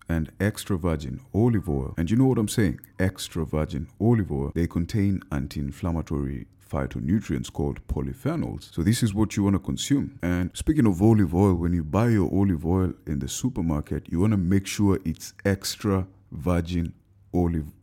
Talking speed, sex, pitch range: 175 wpm, male, 80-100 Hz